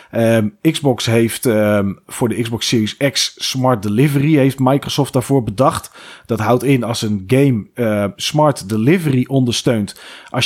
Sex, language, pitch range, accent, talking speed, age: male, Dutch, 110-145 Hz, Dutch, 150 wpm, 40-59